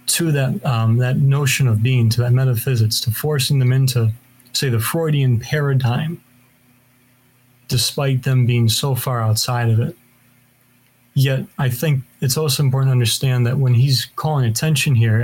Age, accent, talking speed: 30-49, American, 160 wpm